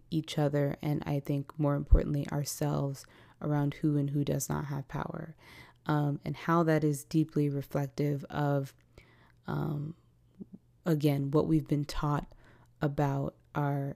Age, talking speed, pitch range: 20-39, 140 wpm, 125-155 Hz